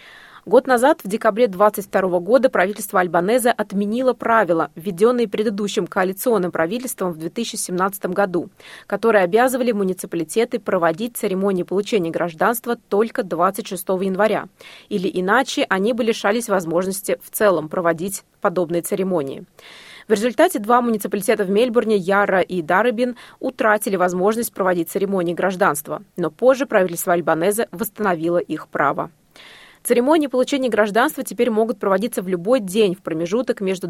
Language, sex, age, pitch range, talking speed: Russian, female, 20-39, 185-235 Hz, 125 wpm